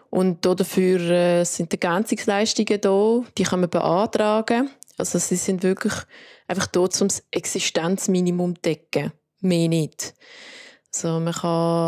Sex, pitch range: female, 170-195 Hz